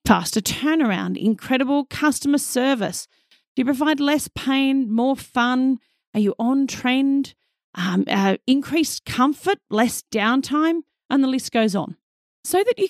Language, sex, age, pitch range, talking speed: English, female, 40-59, 210-280 Hz, 140 wpm